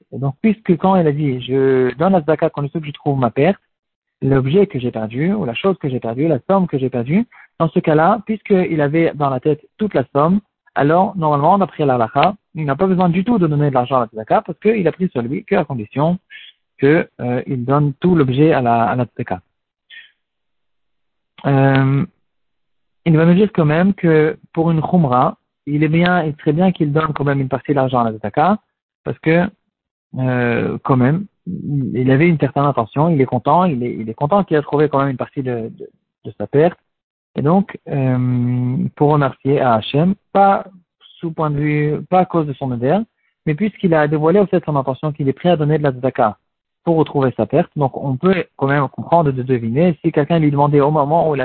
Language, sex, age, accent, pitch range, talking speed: French, male, 40-59, French, 135-180 Hz, 225 wpm